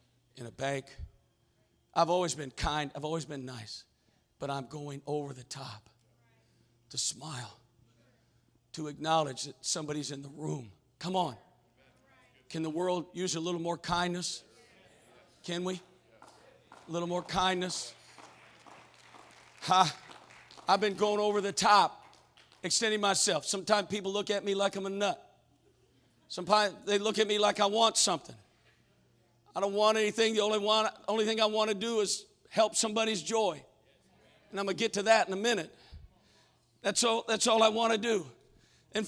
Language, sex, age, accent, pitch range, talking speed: English, male, 50-69, American, 150-230 Hz, 165 wpm